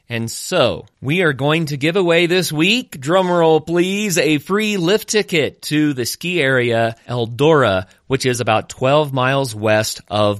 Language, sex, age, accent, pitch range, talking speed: English, male, 30-49, American, 110-150 Hz, 160 wpm